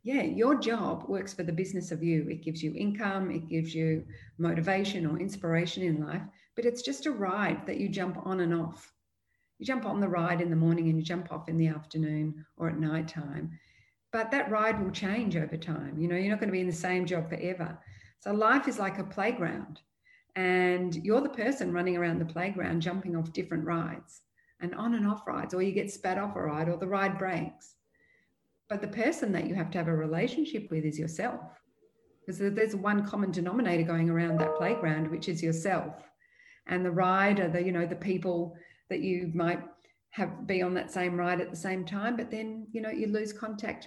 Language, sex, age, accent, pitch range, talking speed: English, female, 50-69, Australian, 165-205 Hz, 210 wpm